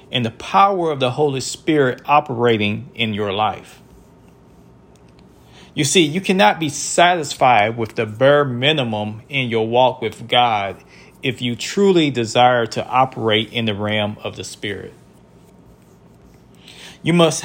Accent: American